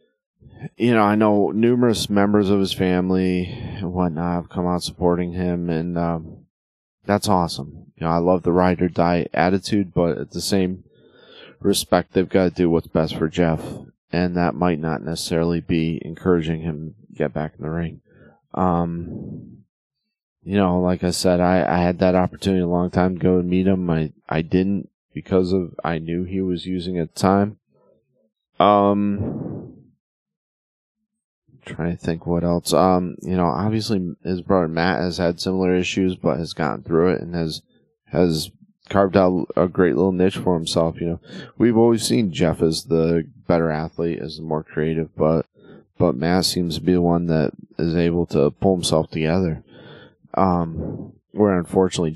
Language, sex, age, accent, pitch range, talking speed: English, male, 30-49, American, 85-95 Hz, 175 wpm